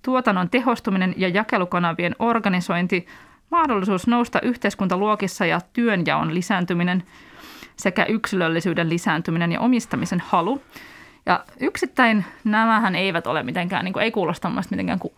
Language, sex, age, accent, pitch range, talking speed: Finnish, female, 20-39, native, 185-235 Hz, 110 wpm